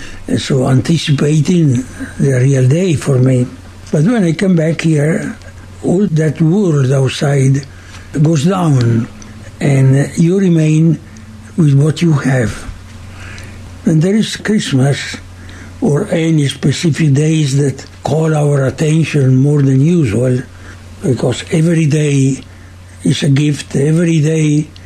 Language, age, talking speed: English, 60-79, 120 wpm